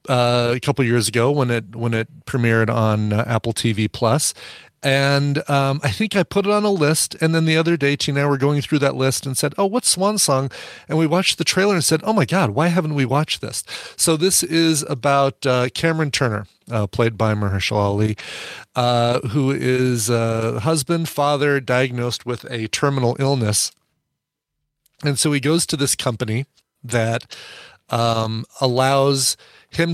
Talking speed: 185 wpm